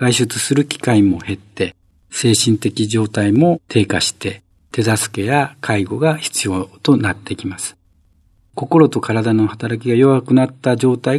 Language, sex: Japanese, male